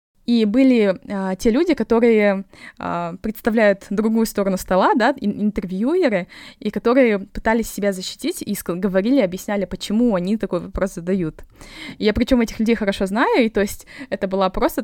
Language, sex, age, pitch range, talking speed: Russian, female, 20-39, 190-230 Hz, 160 wpm